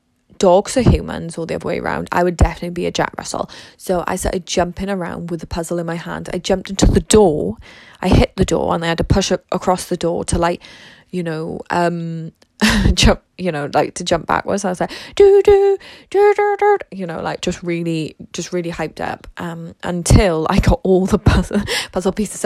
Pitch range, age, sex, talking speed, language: 170-200 Hz, 20-39, female, 210 wpm, English